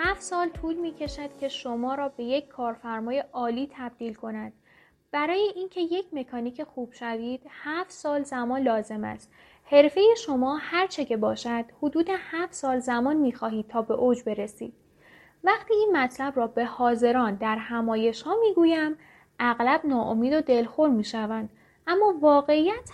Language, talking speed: Persian, 145 wpm